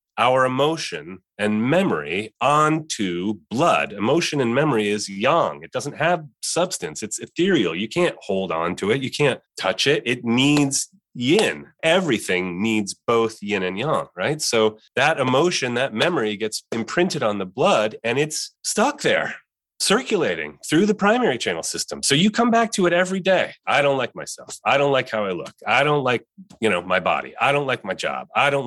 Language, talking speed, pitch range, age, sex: English, 185 wpm, 110-165 Hz, 30-49, male